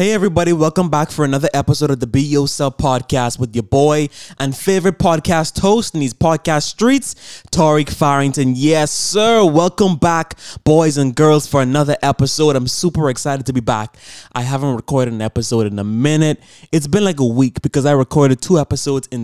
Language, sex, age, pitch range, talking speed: English, male, 20-39, 120-145 Hz, 185 wpm